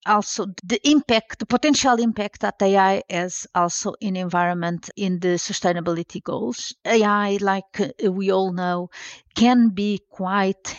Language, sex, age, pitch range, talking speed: English, female, 50-69, 180-220 Hz, 135 wpm